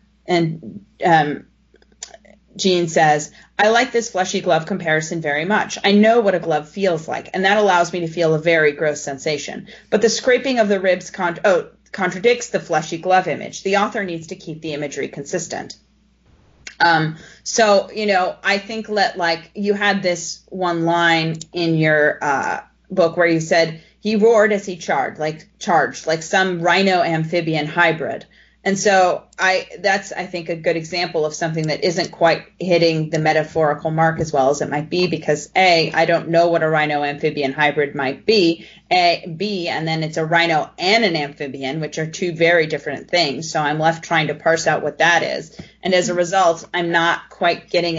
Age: 30-49